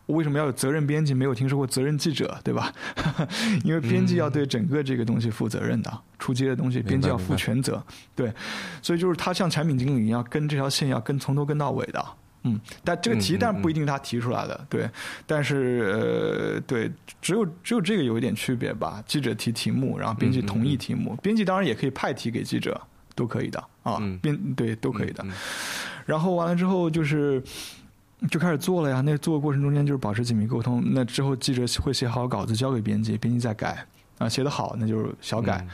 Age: 20-39